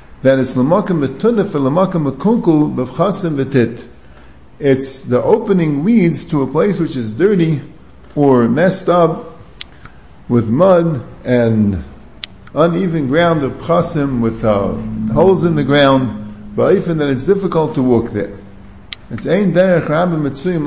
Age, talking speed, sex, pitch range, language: 50-69, 135 wpm, male, 125-185 Hz, English